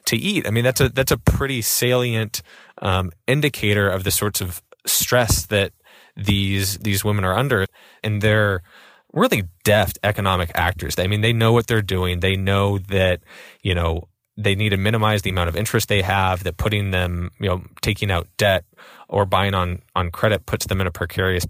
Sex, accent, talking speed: male, American, 195 wpm